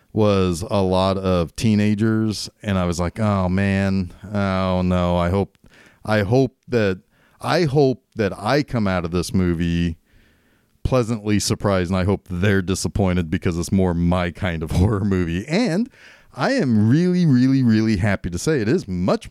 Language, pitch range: English, 95-135 Hz